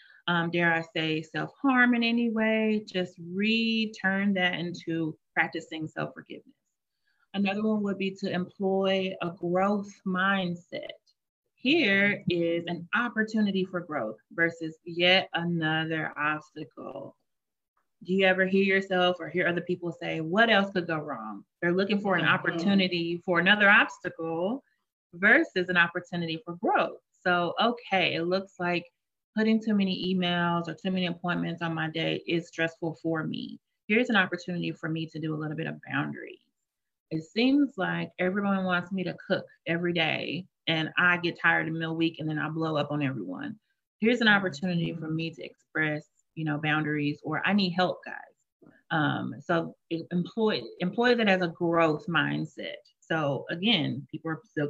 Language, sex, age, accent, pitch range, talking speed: English, female, 30-49, American, 165-200 Hz, 160 wpm